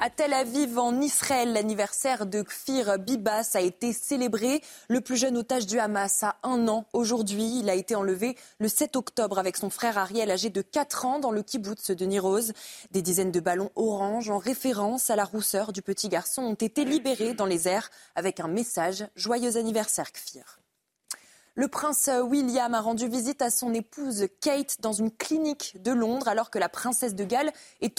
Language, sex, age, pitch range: French, female, 20-39, 205-260 Hz